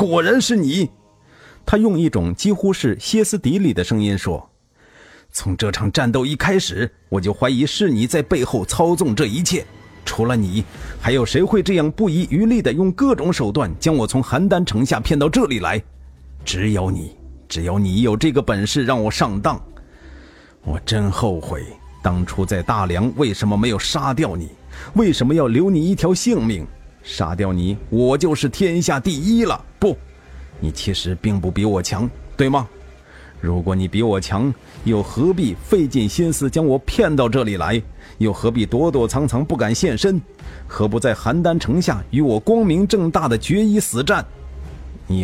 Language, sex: Chinese, male